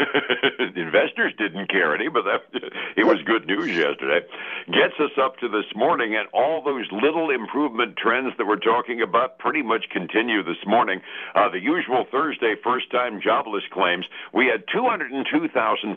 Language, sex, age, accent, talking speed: English, male, 60-79, American, 160 wpm